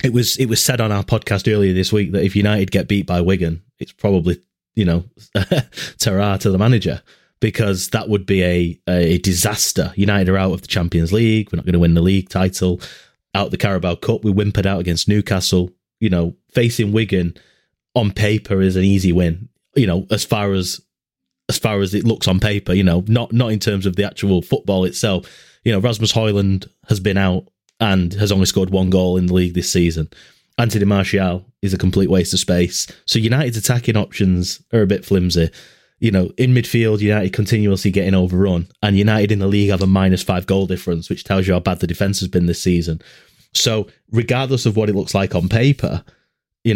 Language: English